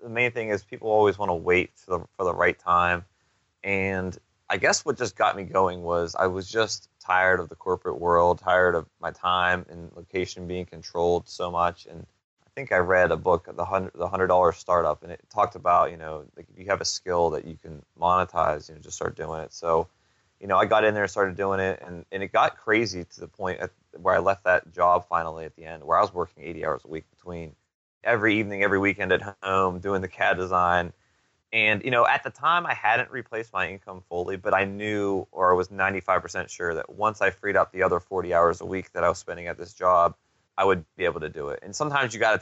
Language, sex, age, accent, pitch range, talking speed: English, male, 20-39, American, 85-100 Hz, 245 wpm